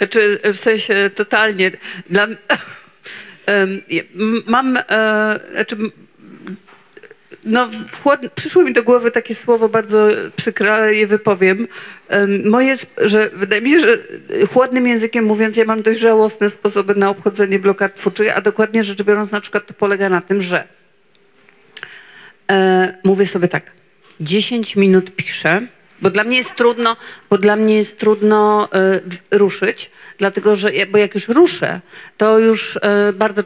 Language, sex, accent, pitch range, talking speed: Polish, female, native, 190-220 Hz, 140 wpm